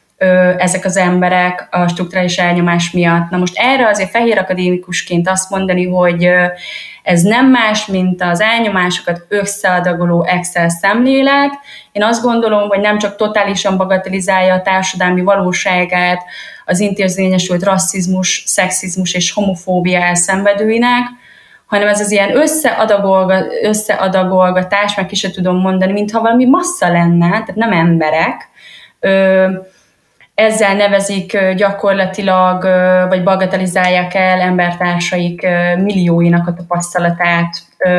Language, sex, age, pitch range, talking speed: Hungarian, female, 20-39, 180-205 Hz, 110 wpm